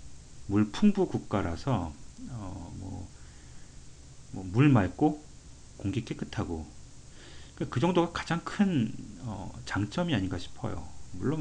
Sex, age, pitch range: male, 40-59, 80-125 Hz